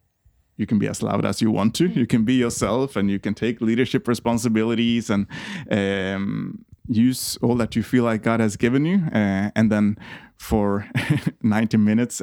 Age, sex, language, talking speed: 20-39, male, Danish, 180 wpm